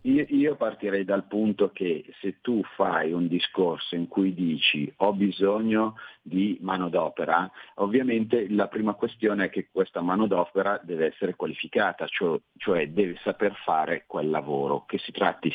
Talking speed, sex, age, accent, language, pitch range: 145 wpm, male, 50-69, native, Italian, 90-105 Hz